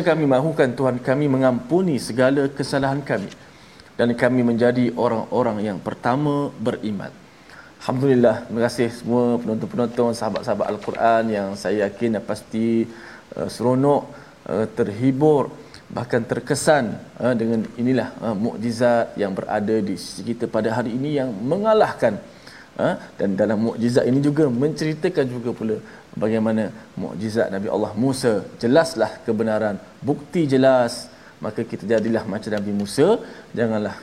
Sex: male